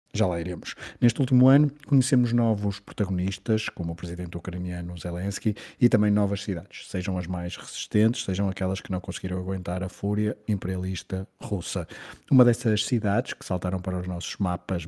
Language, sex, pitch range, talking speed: Portuguese, male, 95-115 Hz, 165 wpm